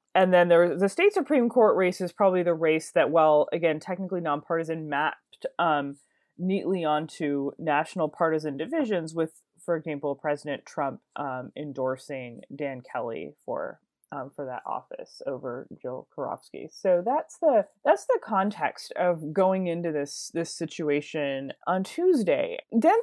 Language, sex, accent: English, female, American